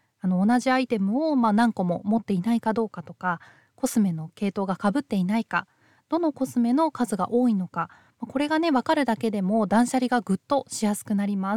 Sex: female